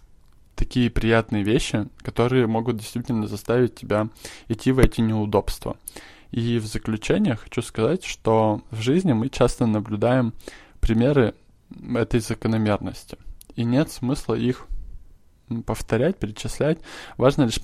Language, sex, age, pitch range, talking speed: Russian, male, 20-39, 110-125 Hz, 115 wpm